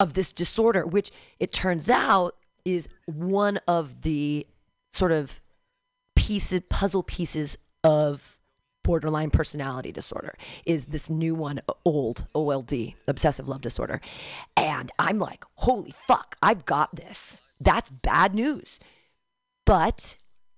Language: English